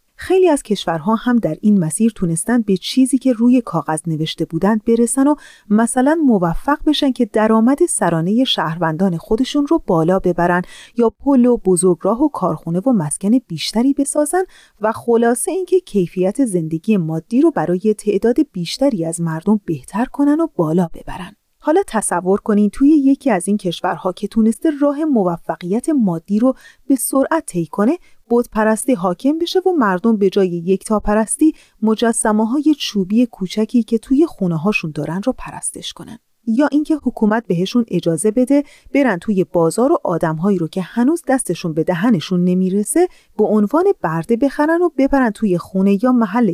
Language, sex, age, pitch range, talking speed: Persian, female, 30-49, 185-275 Hz, 160 wpm